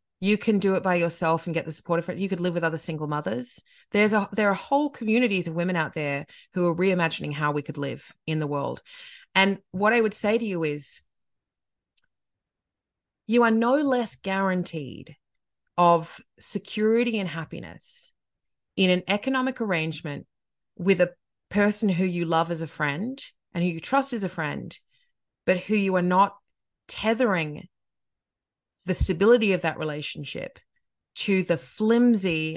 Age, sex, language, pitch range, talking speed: 30-49, female, English, 155-210 Hz, 165 wpm